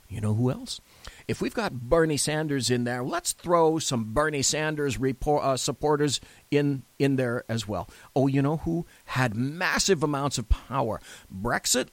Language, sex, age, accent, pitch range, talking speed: English, male, 40-59, American, 125-170 Hz, 170 wpm